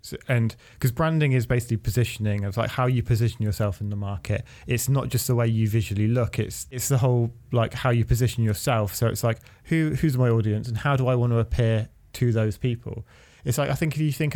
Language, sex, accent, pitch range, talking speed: English, male, British, 110-130 Hz, 235 wpm